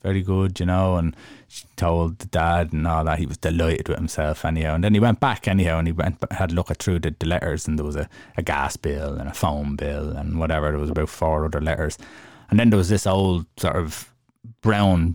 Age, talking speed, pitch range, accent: 20-39, 250 wpm, 80-95 Hz, Irish